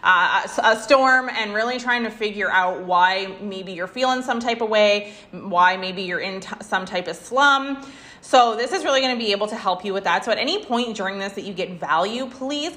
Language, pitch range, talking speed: English, 200-270 Hz, 235 wpm